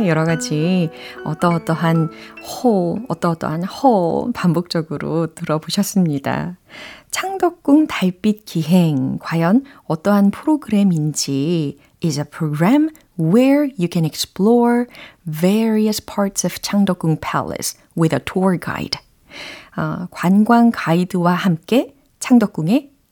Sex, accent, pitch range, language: female, native, 160-230 Hz, Korean